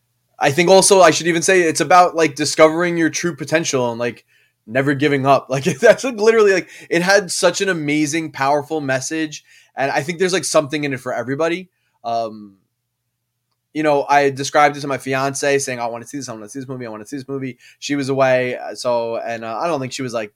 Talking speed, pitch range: 235 wpm, 120-155 Hz